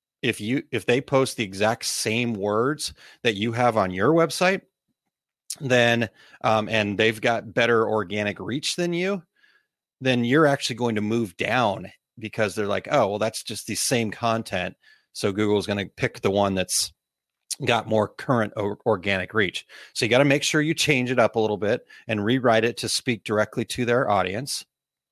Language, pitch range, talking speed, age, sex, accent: English, 105-130 Hz, 185 wpm, 30-49, male, American